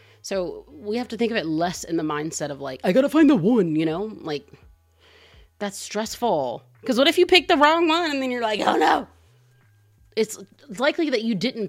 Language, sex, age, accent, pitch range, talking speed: English, female, 30-49, American, 150-220 Hz, 220 wpm